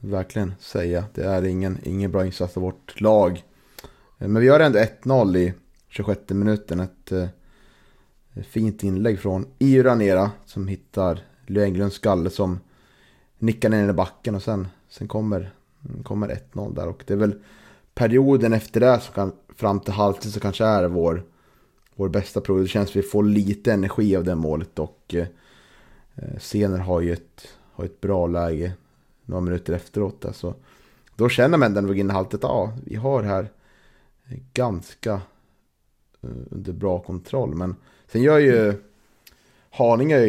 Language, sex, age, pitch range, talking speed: Swedish, male, 30-49, 95-110 Hz, 145 wpm